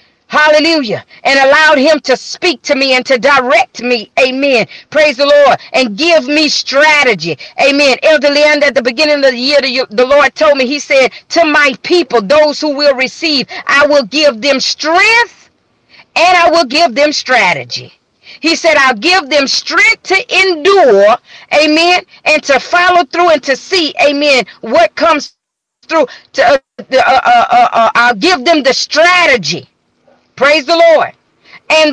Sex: female